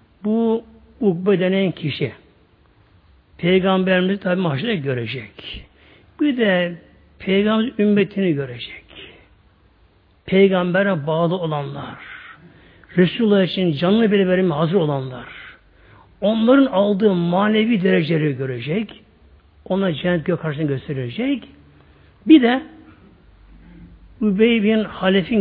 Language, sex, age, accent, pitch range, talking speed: Turkish, male, 60-79, native, 150-215 Hz, 85 wpm